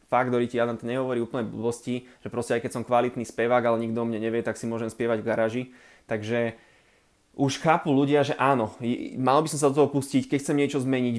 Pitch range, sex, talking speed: 120-140 Hz, male, 230 wpm